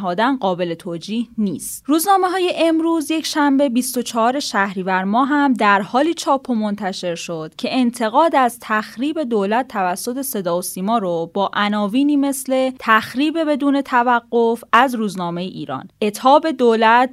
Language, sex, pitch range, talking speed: Persian, female, 200-290 Hz, 130 wpm